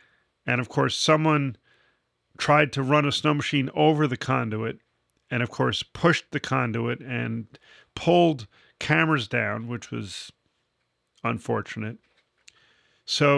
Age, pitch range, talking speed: 40-59, 115-140 Hz, 120 wpm